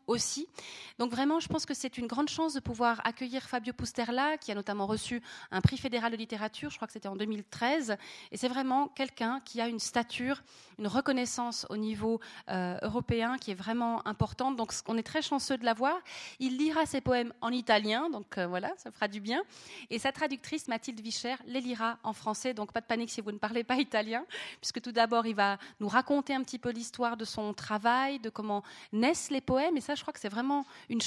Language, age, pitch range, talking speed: French, 30-49, 215-260 Hz, 215 wpm